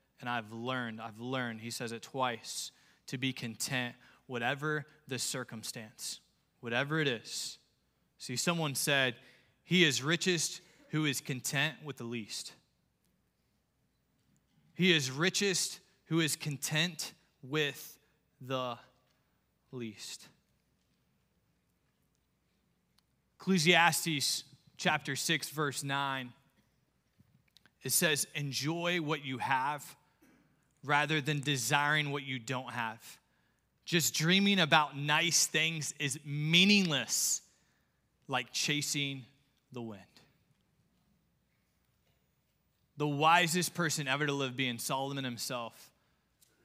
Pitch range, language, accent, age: 125-160 Hz, English, American, 20-39